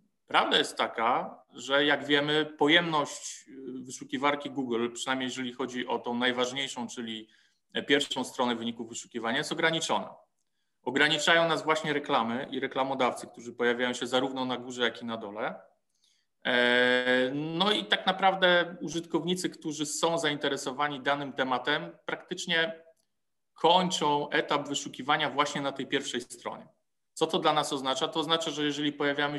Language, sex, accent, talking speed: Polish, male, native, 135 wpm